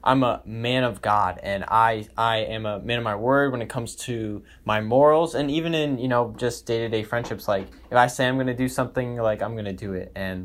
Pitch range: 105-130 Hz